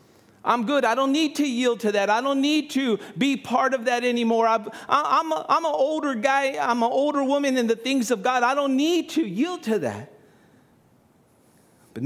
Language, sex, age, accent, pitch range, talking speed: English, male, 50-69, American, 230-280 Hz, 200 wpm